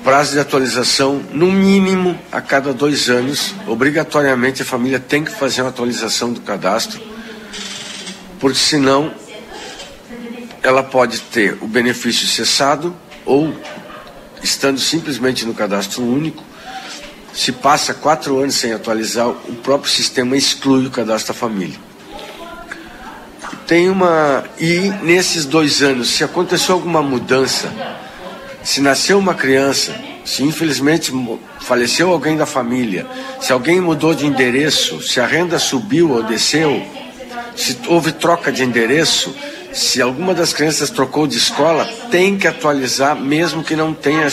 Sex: male